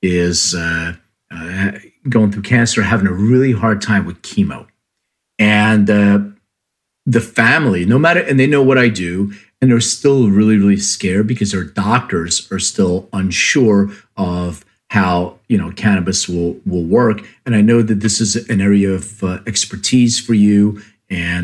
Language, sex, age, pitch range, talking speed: English, male, 40-59, 95-120 Hz, 165 wpm